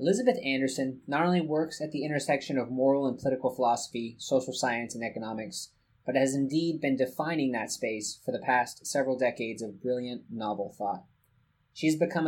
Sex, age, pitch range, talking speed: male, 20-39, 120-140 Hz, 175 wpm